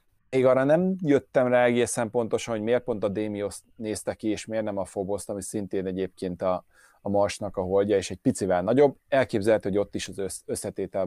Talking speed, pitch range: 200 wpm, 95-120 Hz